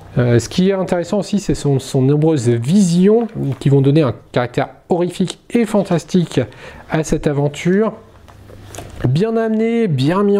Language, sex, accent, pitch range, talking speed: French, male, French, 135-180 Hz, 150 wpm